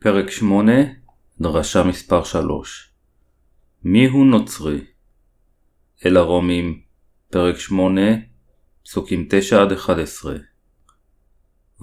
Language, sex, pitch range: Hebrew, male, 85-100 Hz